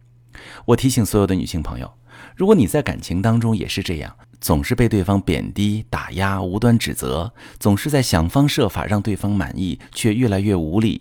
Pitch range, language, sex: 85-120 Hz, Chinese, male